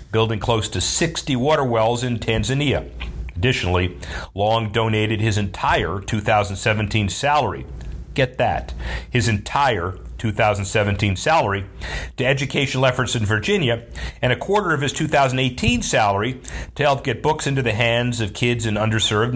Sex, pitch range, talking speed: male, 95-125 Hz, 135 wpm